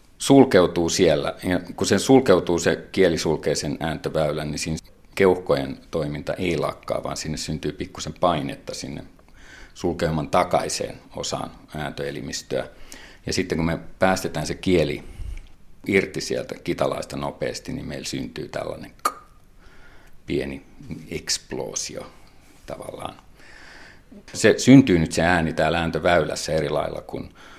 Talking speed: 115 wpm